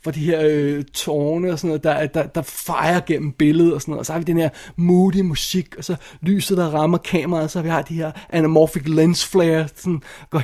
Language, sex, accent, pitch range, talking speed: Danish, male, native, 160-185 Hz, 240 wpm